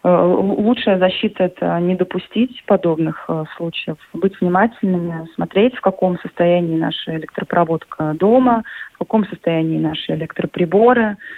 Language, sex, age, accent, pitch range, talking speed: Russian, female, 20-39, native, 165-195 Hz, 115 wpm